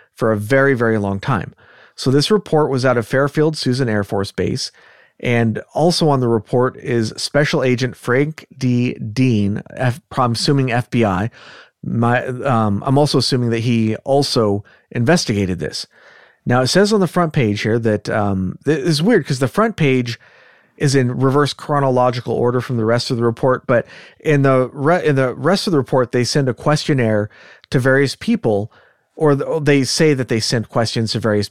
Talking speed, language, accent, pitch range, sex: 180 wpm, English, American, 115-145 Hz, male